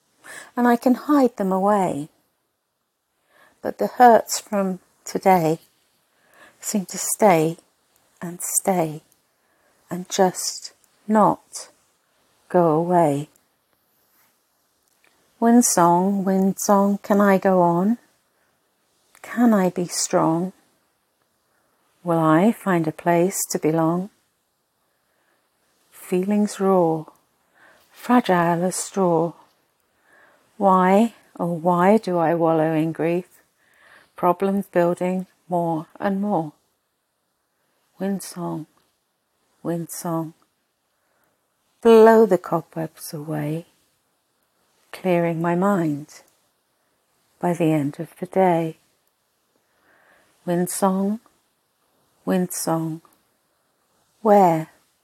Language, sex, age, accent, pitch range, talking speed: English, female, 50-69, British, 165-195 Hz, 85 wpm